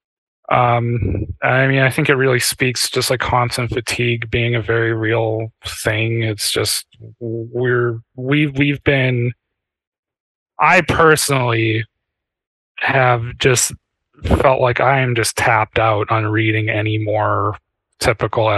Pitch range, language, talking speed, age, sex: 115-145 Hz, English, 125 wpm, 30-49, male